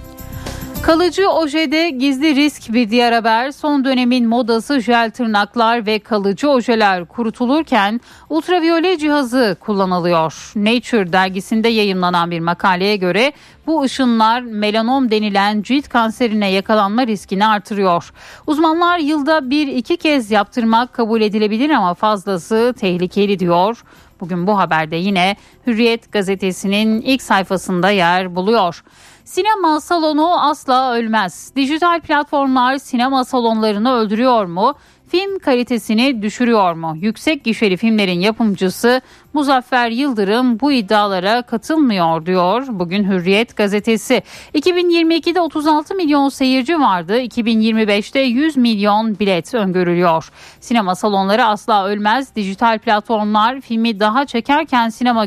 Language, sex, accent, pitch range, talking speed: Turkish, female, native, 200-265 Hz, 110 wpm